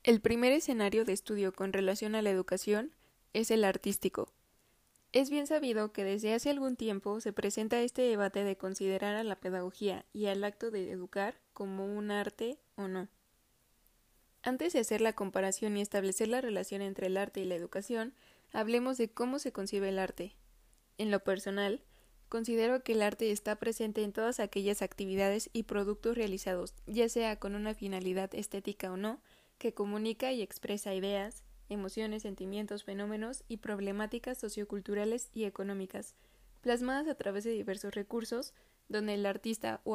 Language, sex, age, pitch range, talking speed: Spanish, female, 20-39, 200-230 Hz, 165 wpm